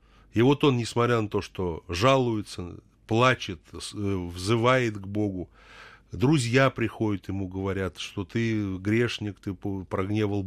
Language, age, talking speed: Russian, 30-49, 120 wpm